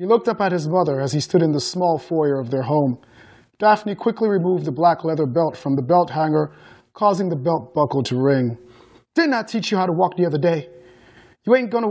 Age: 30-49